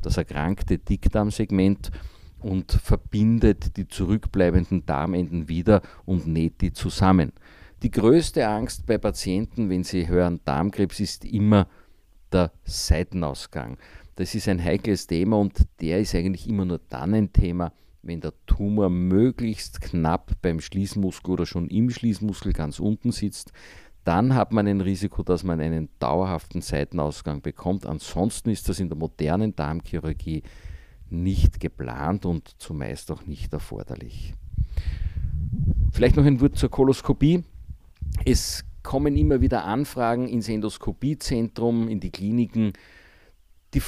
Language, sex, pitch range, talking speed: German, male, 85-105 Hz, 130 wpm